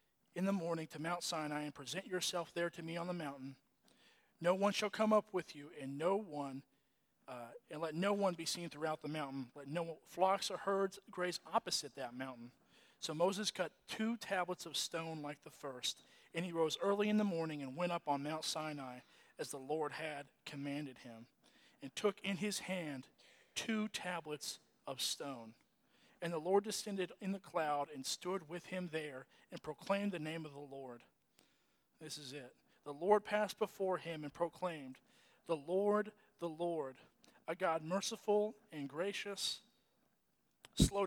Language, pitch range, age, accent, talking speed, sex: English, 150-205 Hz, 40-59, American, 175 wpm, male